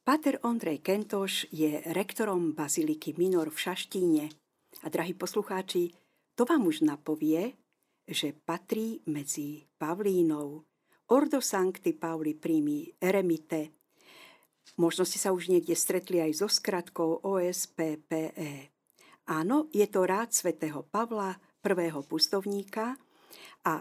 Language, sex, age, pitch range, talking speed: Slovak, female, 50-69, 160-215 Hz, 110 wpm